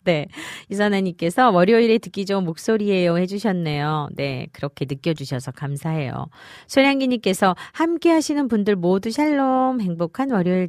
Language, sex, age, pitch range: Korean, female, 40-59, 140-200 Hz